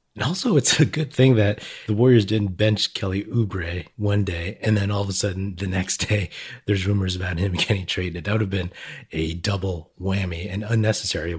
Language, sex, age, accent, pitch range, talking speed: English, male, 30-49, American, 90-110 Hz, 205 wpm